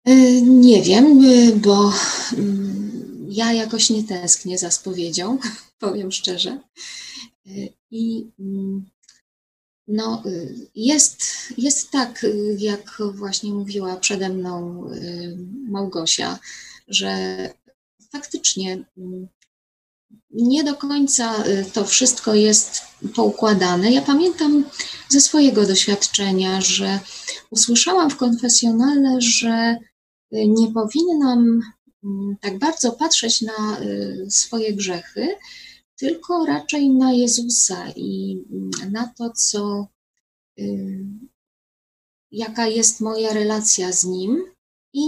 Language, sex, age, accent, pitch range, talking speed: Polish, female, 20-39, native, 200-255 Hz, 85 wpm